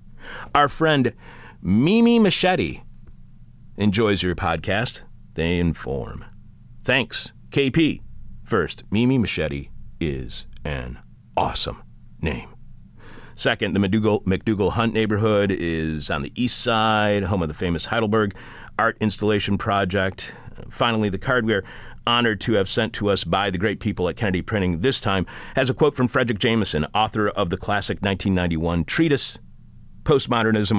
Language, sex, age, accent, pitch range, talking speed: English, male, 40-59, American, 85-115 Hz, 135 wpm